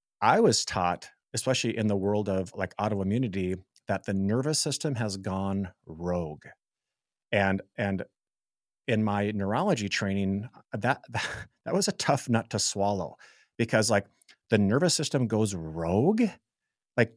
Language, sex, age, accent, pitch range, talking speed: English, male, 30-49, American, 100-125 Hz, 135 wpm